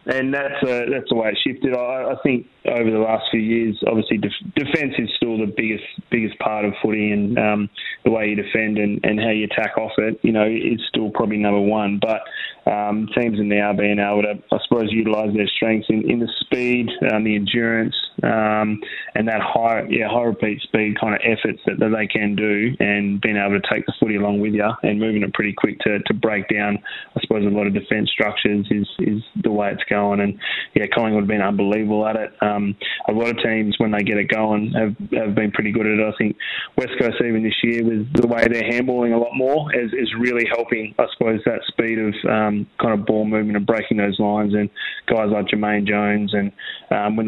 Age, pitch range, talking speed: 20-39, 105-115 Hz, 230 wpm